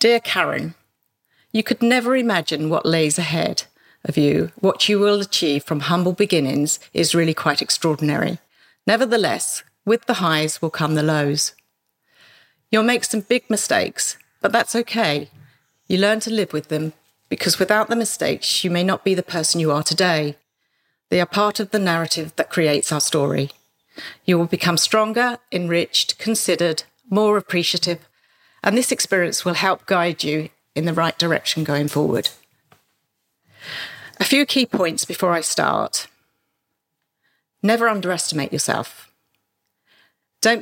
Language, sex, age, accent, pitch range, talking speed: English, female, 50-69, British, 160-215 Hz, 145 wpm